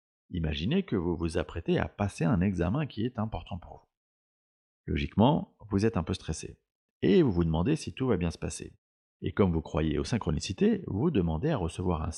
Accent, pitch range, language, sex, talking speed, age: French, 80-120 Hz, French, male, 200 wpm, 30-49